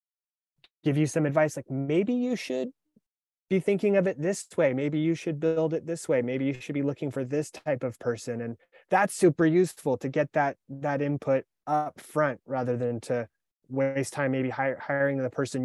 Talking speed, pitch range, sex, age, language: 195 wpm, 135-170 Hz, male, 20-39, English